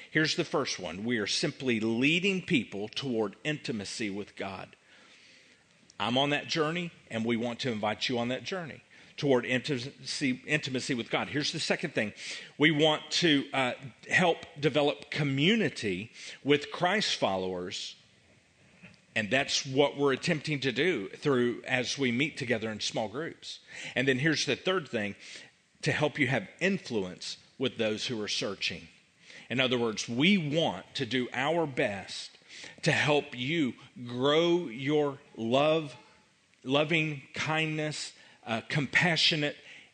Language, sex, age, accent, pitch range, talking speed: English, male, 40-59, American, 115-155 Hz, 145 wpm